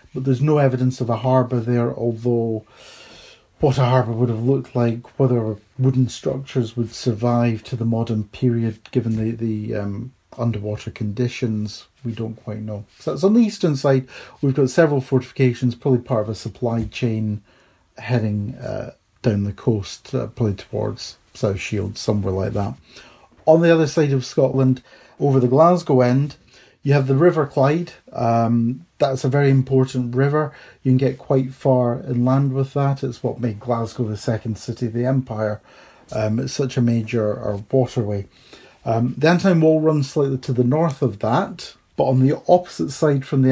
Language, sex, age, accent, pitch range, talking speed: English, male, 40-59, British, 115-135 Hz, 175 wpm